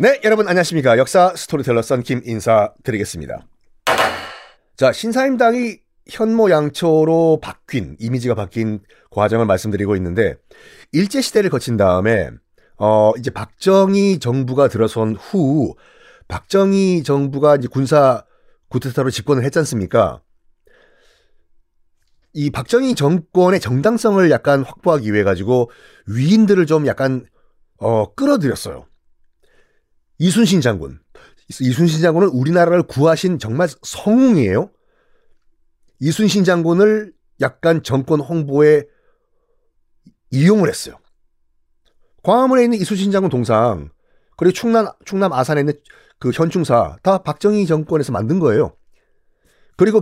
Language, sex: Korean, male